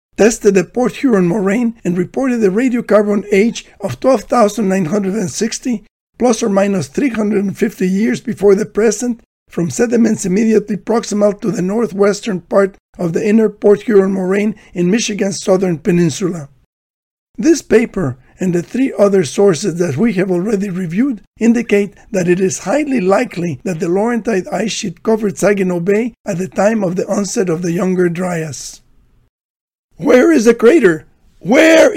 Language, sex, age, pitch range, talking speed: English, male, 60-79, 180-220 Hz, 150 wpm